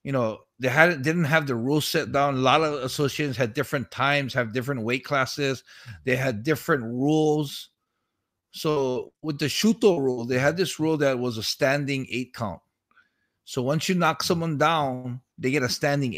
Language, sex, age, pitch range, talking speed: English, male, 50-69, 130-160 Hz, 185 wpm